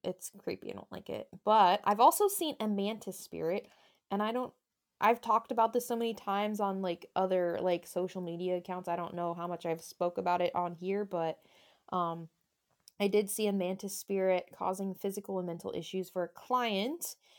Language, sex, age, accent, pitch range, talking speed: English, female, 20-39, American, 185-225 Hz, 195 wpm